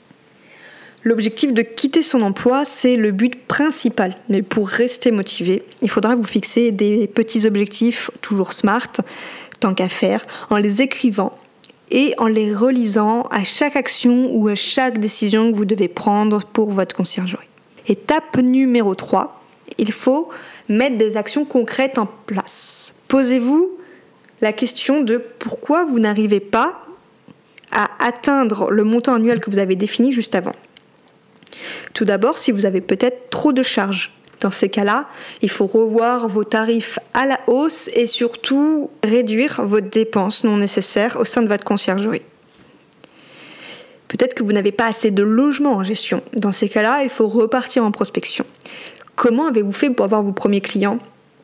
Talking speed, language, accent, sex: 155 wpm, French, French, female